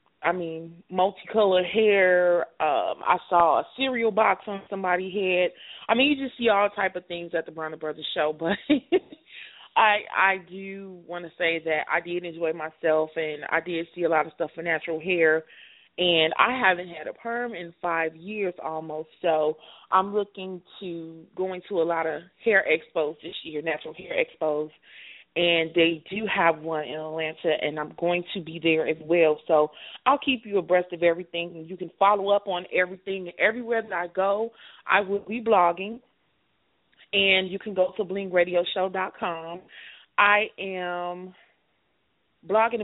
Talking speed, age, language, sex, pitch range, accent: 175 wpm, 20-39, English, female, 165-210 Hz, American